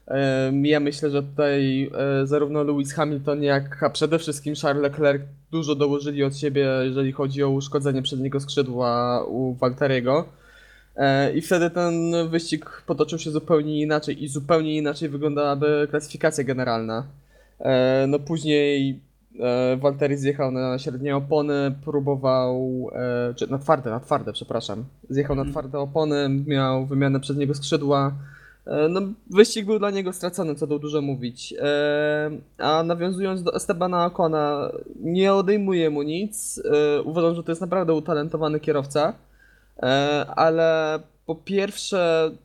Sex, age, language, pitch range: male, 20-39, Polish, 135-155 Hz